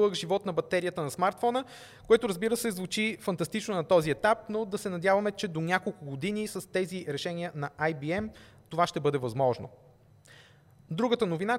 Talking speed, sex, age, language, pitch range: 165 wpm, male, 20-39, Bulgarian, 155-215 Hz